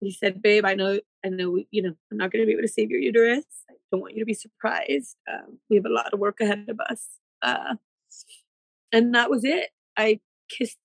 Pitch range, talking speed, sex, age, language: 210-285 Hz, 240 wpm, female, 30-49, English